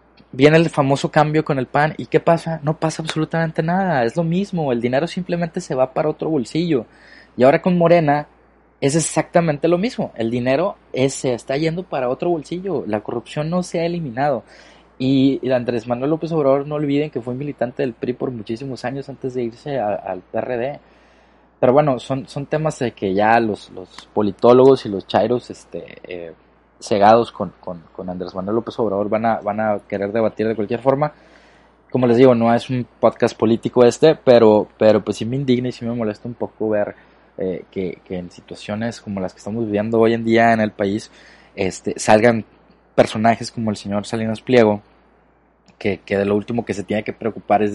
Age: 20-39